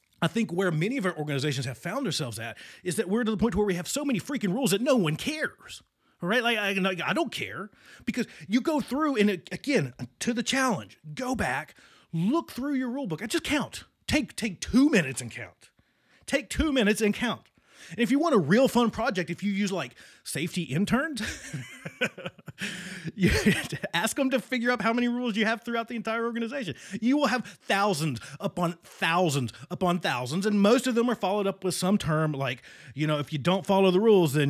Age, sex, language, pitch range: 30-49, male, English, 155-235 Hz